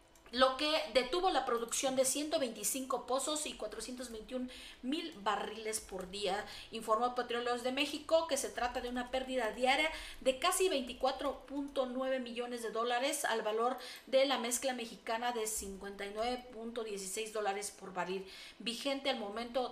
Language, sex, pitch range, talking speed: Spanish, female, 205-260 Hz, 135 wpm